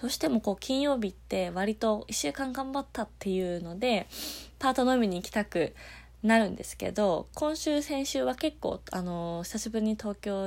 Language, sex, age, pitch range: Japanese, female, 20-39, 180-240 Hz